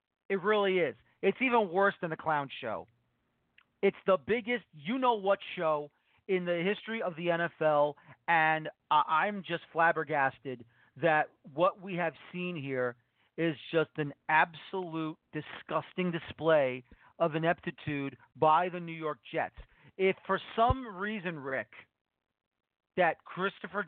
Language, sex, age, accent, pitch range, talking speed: English, male, 40-59, American, 160-210 Hz, 130 wpm